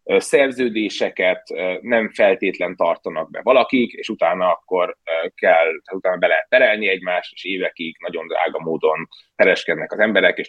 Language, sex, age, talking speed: Hungarian, male, 30-49, 135 wpm